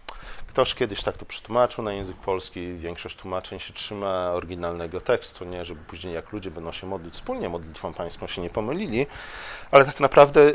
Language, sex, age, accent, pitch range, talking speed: Polish, male, 40-59, native, 90-115 Hz, 175 wpm